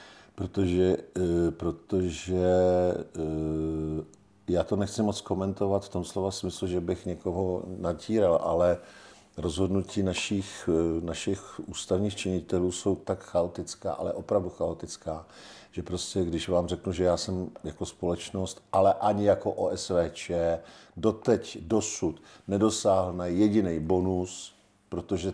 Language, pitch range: Czech, 85-95 Hz